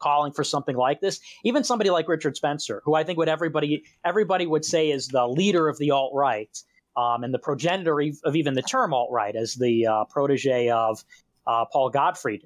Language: English